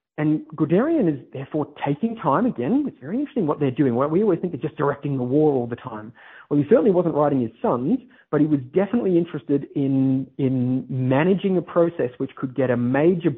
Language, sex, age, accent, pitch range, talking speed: English, male, 40-59, Australian, 140-175 Hz, 205 wpm